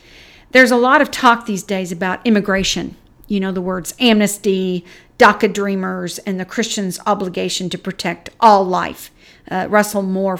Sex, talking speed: female, 155 wpm